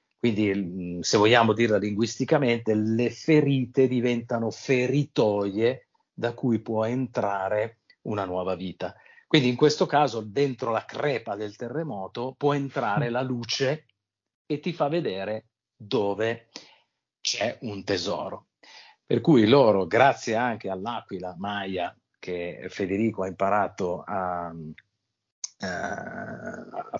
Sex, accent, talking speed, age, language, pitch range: male, native, 110 wpm, 50-69, Italian, 95-125 Hz